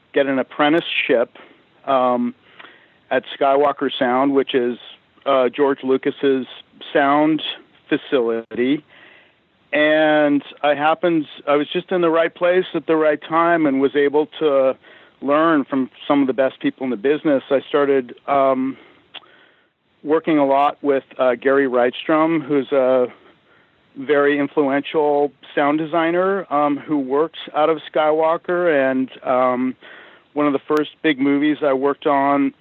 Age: 50-69